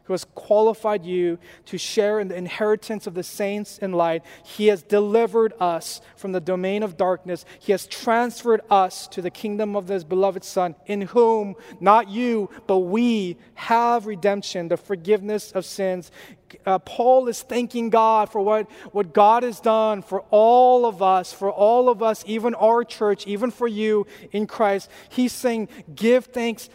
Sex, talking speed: male, 175 wpm